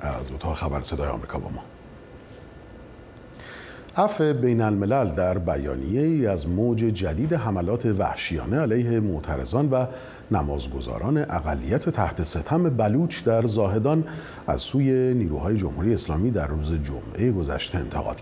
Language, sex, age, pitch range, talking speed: Persian, male, 40-59, 85-130 Hz, 125 wpm